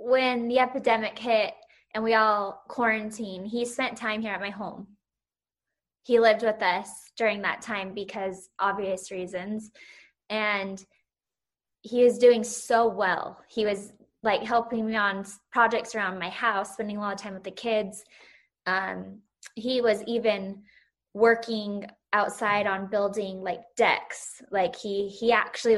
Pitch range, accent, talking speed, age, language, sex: 200-235 Hz, American, 145 wpm, 20-39, English, female